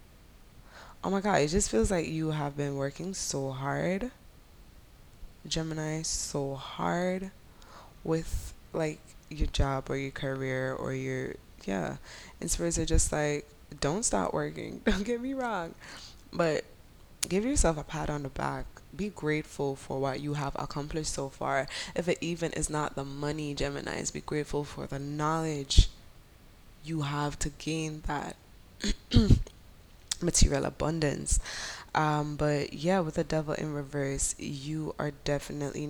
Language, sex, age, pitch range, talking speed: English, female, 10-29, 135-160 Hz, 145 wpm